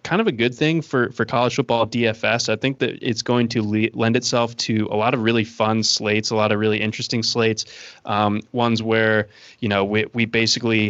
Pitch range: 110-125 Hz